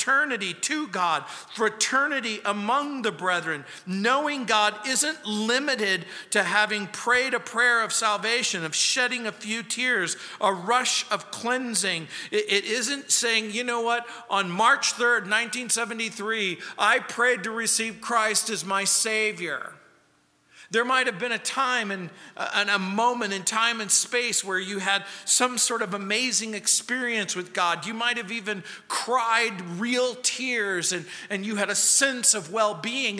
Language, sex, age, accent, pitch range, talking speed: English, male, 50-69, American, 205-245 Hz, 150 wpm